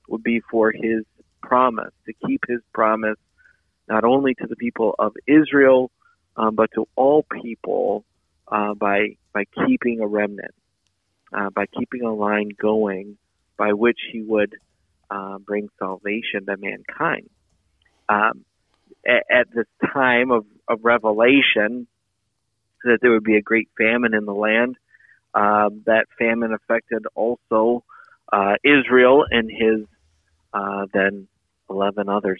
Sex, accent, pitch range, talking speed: male, American, 100-115 Hz, 135 wpm